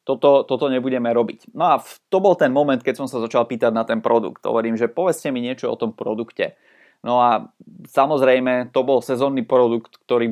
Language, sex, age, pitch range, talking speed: Czech, male, 20-39, 120-140 Hz, 200 wpm